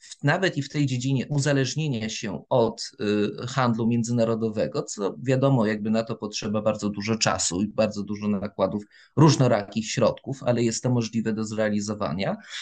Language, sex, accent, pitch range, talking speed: Polish, male, native, 110-145 Hz, 145 wpm